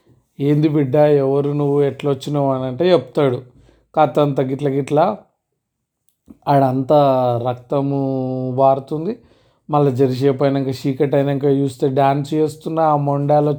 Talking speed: 100 wpm